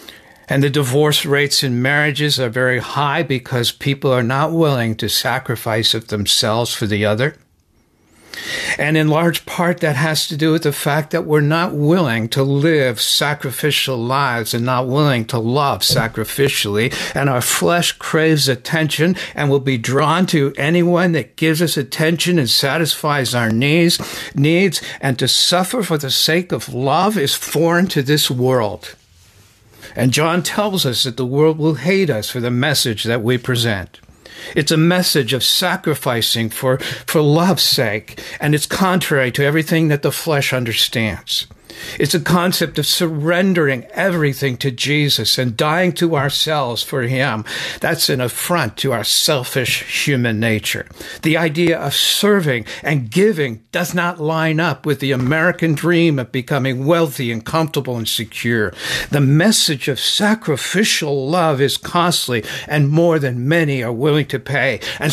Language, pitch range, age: English, 125-165 Hz, 60-79